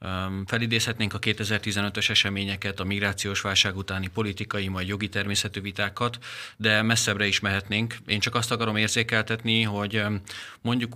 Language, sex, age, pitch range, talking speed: Hungarian, male, 30-49, 95-115 Hz, 130 wpm